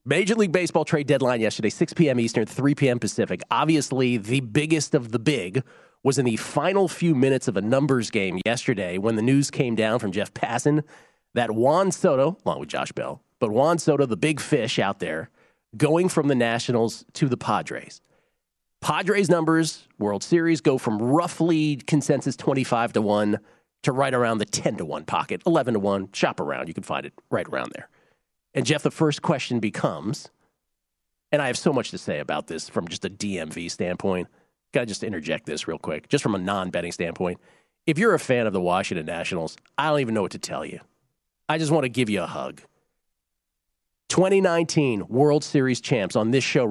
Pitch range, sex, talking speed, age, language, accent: 105-150 Hz, male, 195 wpm, 40-59, English, American